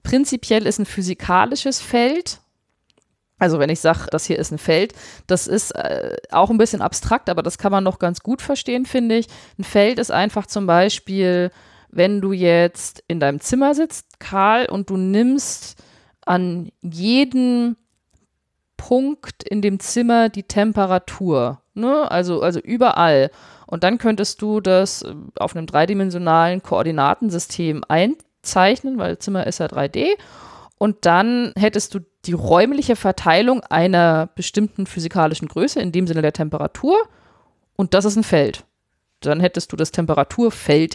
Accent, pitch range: German, 165-225 Hz